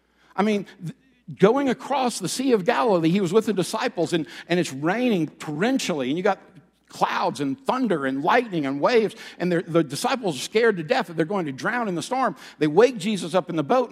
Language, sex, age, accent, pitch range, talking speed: English, male, 60-79, American, 175-235 Hz, 215 wpm